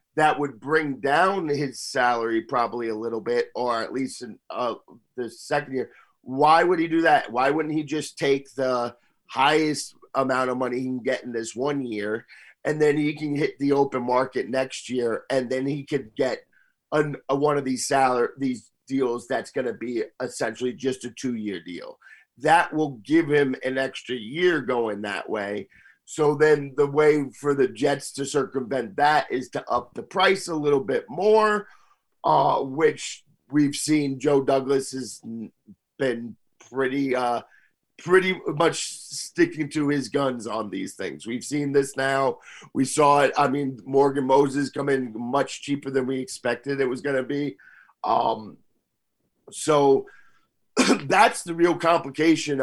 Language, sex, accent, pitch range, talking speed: English, male, American, 125-150 Hz, 170 wpm